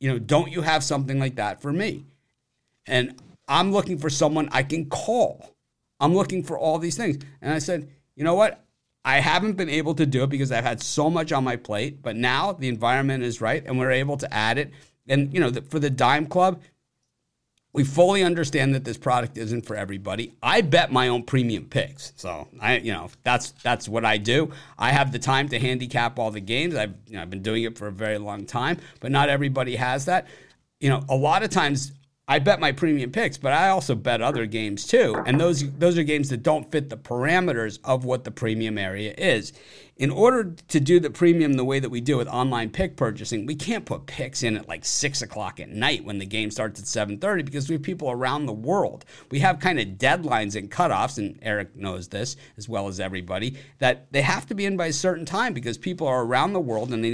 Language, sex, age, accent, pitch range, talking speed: English, male, 50-69, American, 115-155 Hz, 230 wpm